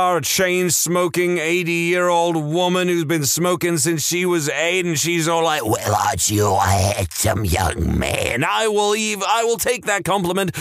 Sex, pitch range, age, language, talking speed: male, 115-170 Hz, 30-49, English, 185 wpm